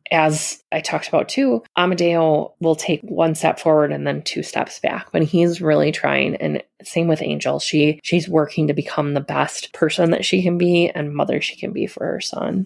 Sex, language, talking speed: female, English, 210 wpm